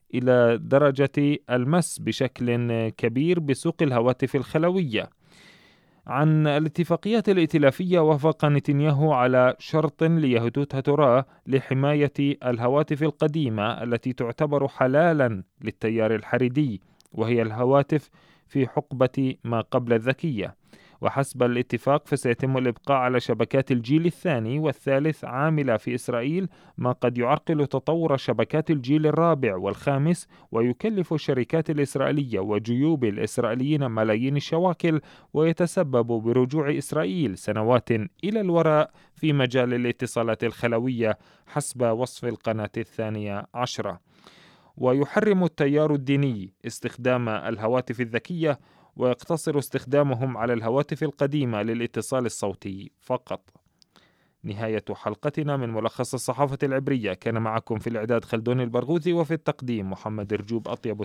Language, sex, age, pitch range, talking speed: Arabic, male, 30-49, 115-150 Hz, 105 wpm